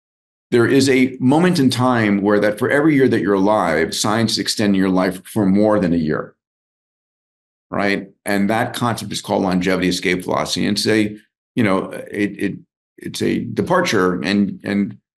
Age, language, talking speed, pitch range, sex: 50-69, English, 180 wpm, 95-115 Hz, male